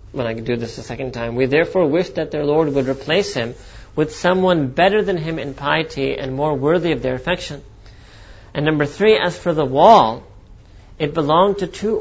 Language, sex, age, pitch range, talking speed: English, male, 40-59, 125-160 Hz, 205 wpm